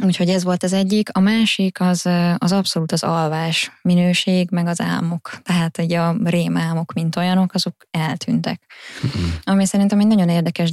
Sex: female